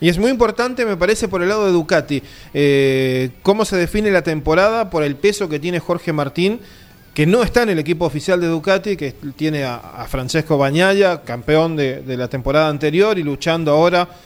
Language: Spanish